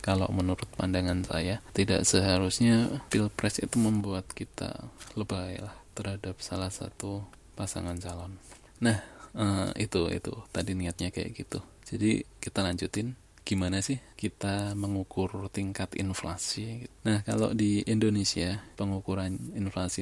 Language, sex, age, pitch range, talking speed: Indonesian, male, 20-39, 95-105 Hz, 115 wpm